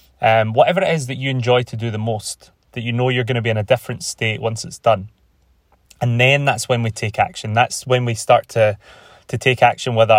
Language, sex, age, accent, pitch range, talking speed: English, male, 20-39, British, 110-135 Hz, 240 wpm